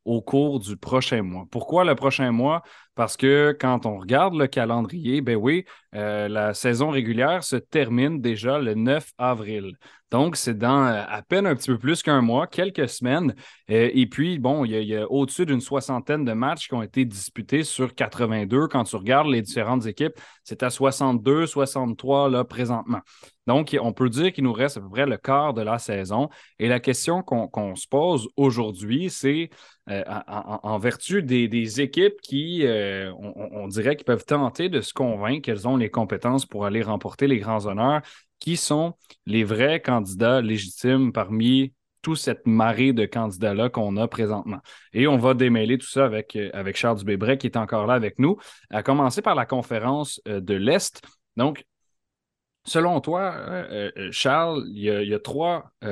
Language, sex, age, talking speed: French, male, 30-49, 190 wpm